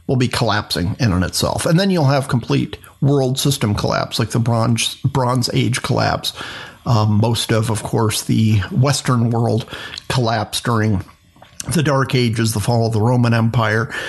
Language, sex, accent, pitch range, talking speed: English, male, American, 115-140 Hz, 165 wpm